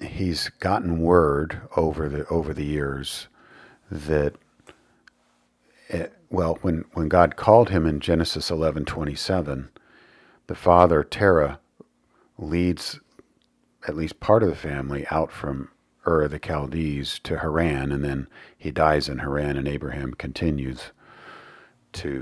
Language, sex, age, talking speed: English, male, 50-69, 125 wpm